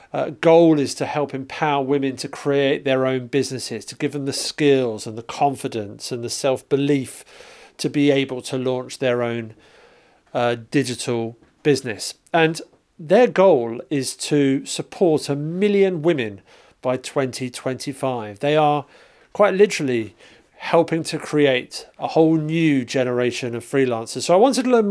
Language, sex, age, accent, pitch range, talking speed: English, male, 40-59, British, 130-165 Hz, 150 wpm